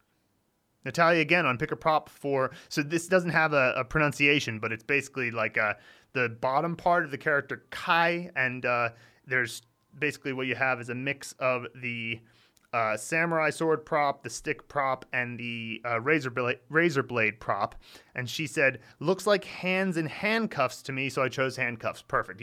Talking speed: 180 wpm